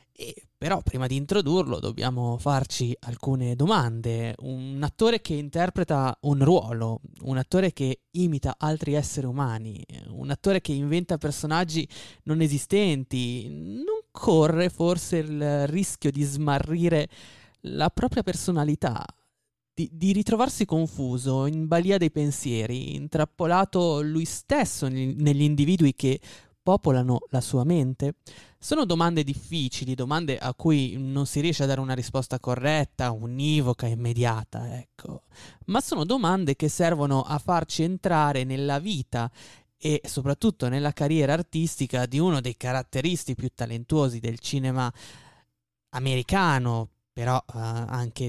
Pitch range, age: 125-155 Hz, 20-39